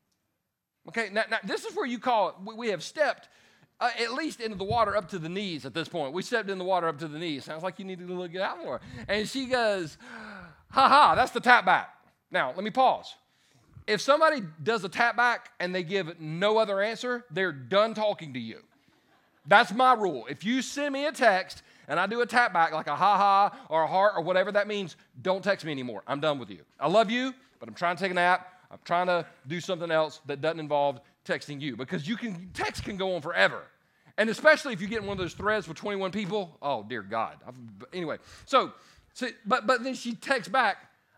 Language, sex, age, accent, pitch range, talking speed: English, male, 40-59, American, 160-225 Hz, 230 wpm